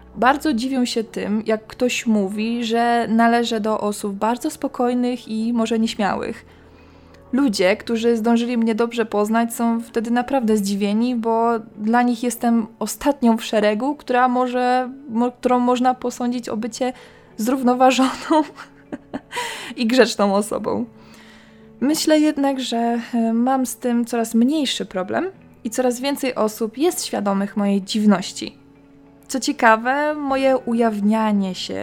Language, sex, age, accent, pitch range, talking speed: Polish, female, 20-39, native, 220-255 Hz, 125 wpm